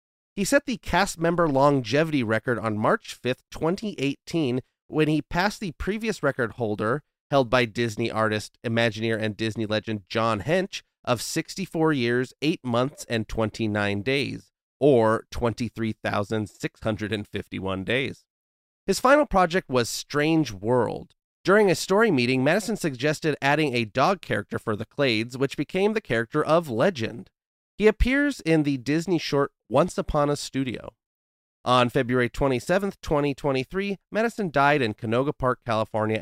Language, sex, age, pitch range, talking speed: English, male, 30-49, 110-155 Hz, 140 wpm